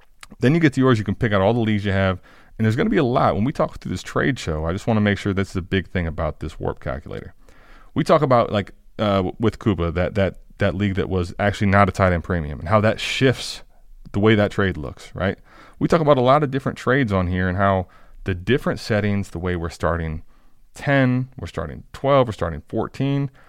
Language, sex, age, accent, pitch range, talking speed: English, male, 30-49, American, 90-125 Hz, 245 wpm